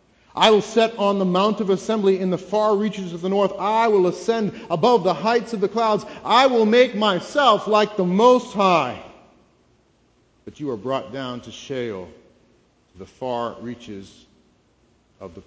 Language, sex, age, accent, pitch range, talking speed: English, male, 40-59, American, 125-185 Hz, 175 wpm